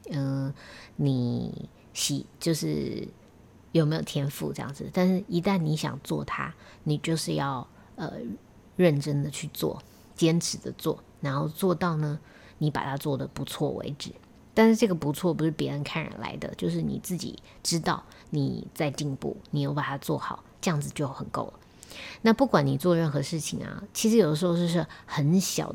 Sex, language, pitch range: female, Chinese, 145-175 Hz